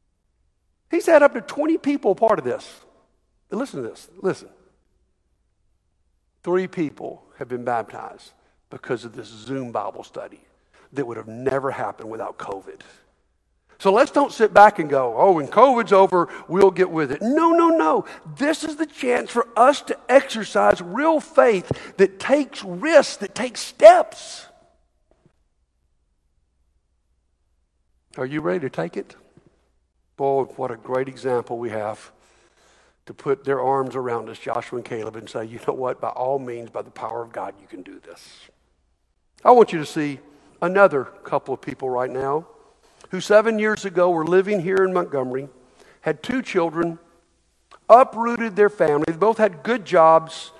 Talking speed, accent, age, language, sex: 160 wpm, American, 60-79, English, male